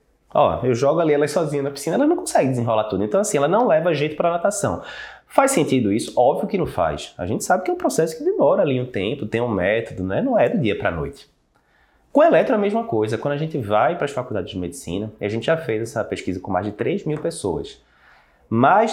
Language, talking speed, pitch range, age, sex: Portuguese, 260 wpm, 105-165 Hz, 20-39, male